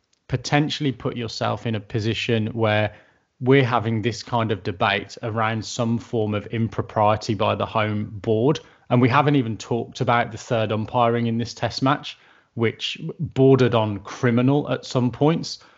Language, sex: English, male